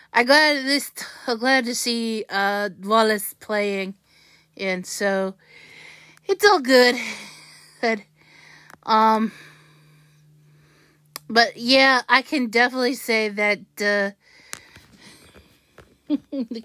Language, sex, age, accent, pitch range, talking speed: English, female, 30-49, American, 200-250 Hz, 90 wpm